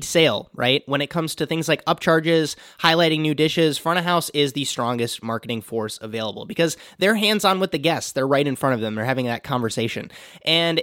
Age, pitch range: 20-39, 125-165 Hz